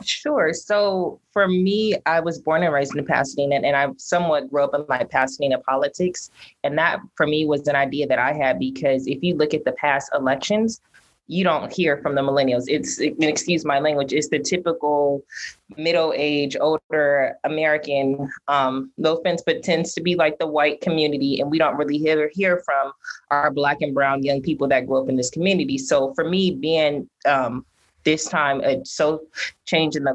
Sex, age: female, 20-39